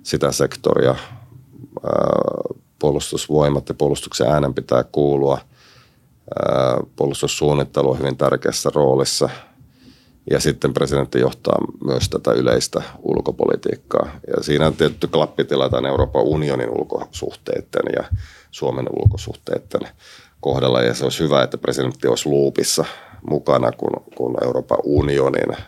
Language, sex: Finnish, male